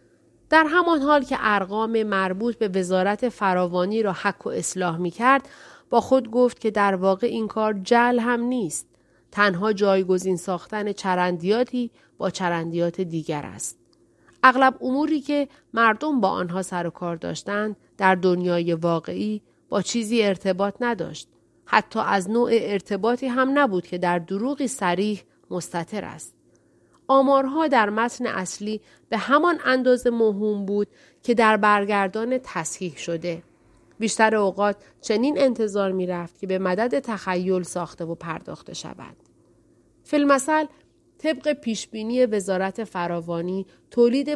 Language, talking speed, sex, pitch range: Persian, 130 wpm, female, 185-245 Hz